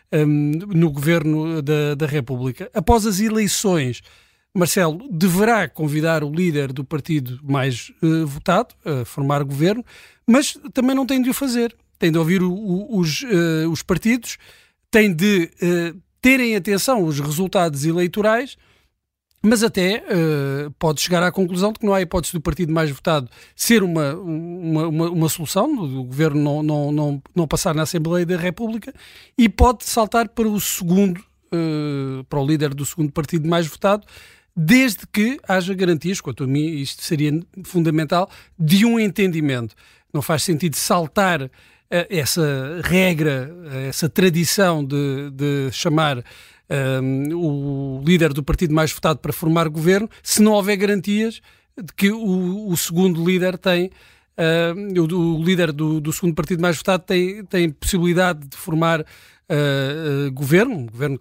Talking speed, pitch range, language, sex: 145 wpm, 150-195 Hz, Portuguese, male